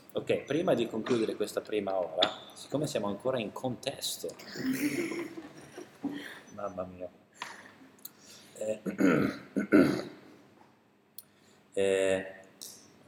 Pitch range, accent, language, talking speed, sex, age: 100-150 Hz, native, Italian, 75 wpm, male, 30-49